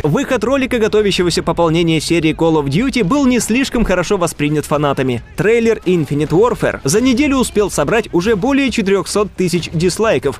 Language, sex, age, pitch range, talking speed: Russian, male, 20-39, 150-220 Hz, 150 wpm